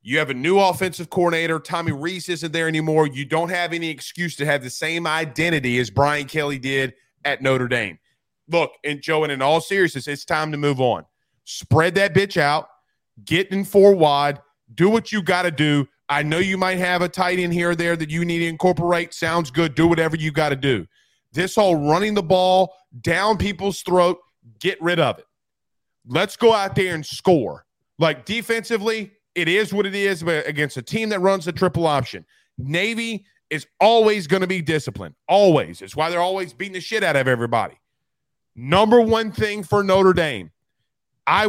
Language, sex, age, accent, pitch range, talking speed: English, male, 30-49, American, 145-195 Hz, 195 wpm